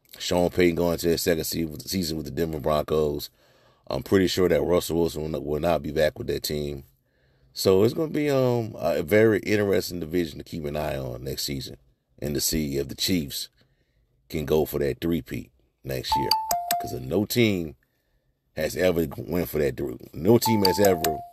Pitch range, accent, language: 80-105 Hz, American, English